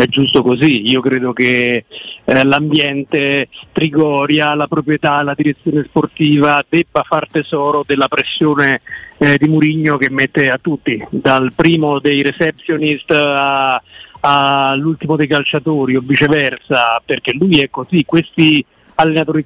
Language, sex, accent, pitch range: Italian, male, native, 140-170 Hz